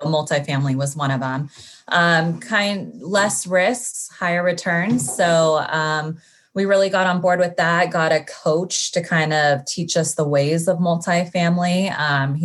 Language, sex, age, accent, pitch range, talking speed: English, female, 20-39, American, 140-165 Hz, 160 wpm